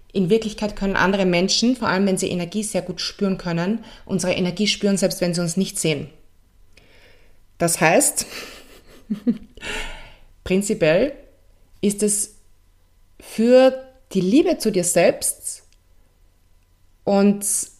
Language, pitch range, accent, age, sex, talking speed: German, 170-220 Hz, German, 20-39, female, 120 wpm